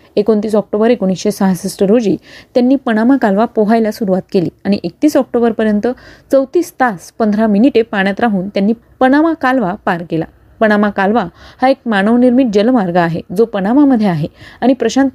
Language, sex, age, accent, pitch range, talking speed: Marathi, female, 30-49, native, 195-245 Hz, 150 wpm